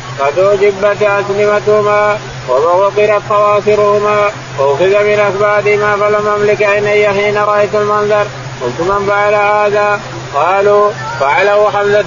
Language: Arabic